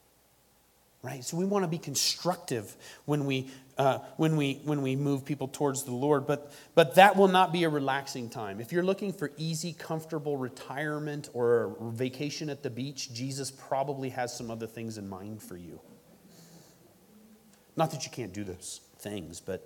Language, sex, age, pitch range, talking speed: English, male, 30-49, 125-165 Hz, 180 wpm